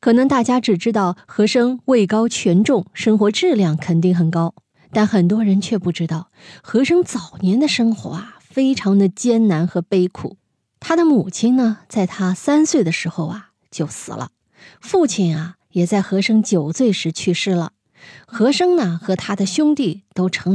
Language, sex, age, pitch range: Chinese, female, 20-39, 175-240 Hz